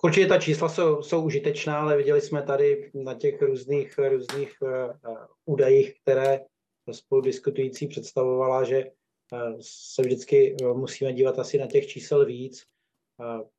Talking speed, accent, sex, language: 140 wpm, native, male, Czech